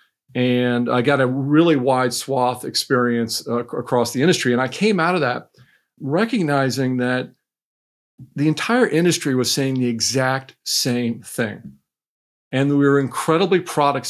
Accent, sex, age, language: American, male, 50-69, English